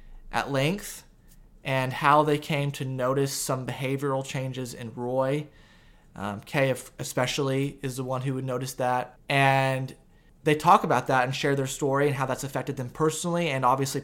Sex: male